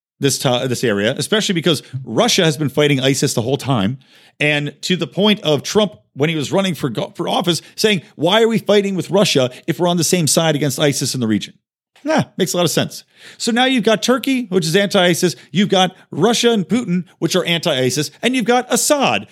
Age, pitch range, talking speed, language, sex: 40-59, 140-220 Hz, 225 wpm, English, male